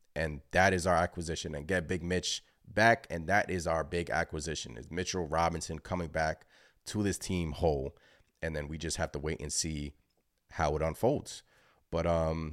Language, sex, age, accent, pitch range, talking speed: English, male, 20-39, American, 80-105 Hz, 185 wpm